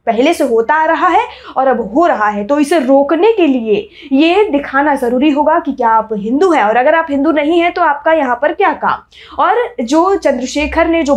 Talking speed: 225 wpm